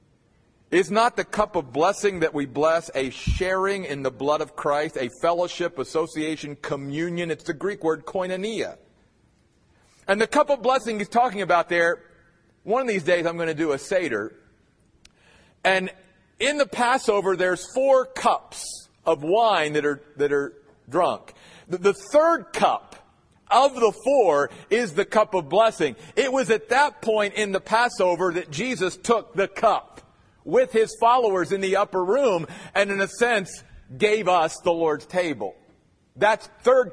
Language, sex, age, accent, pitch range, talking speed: English, male, 40-59, American, 170-235 Hz, 160 wpm